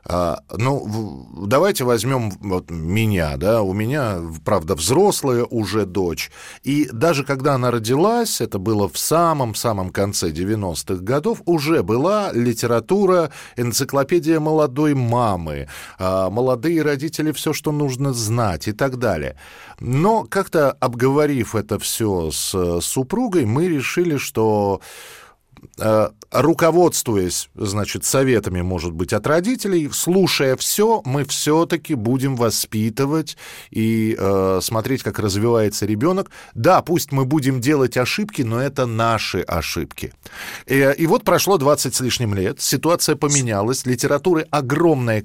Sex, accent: male, native